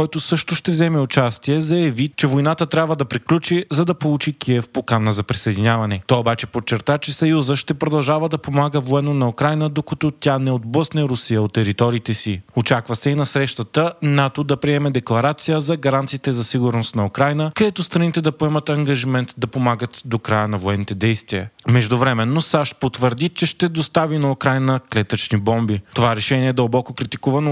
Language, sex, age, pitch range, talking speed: Bulgarian, male, 30-49, 120-155 Hz, 180 wpm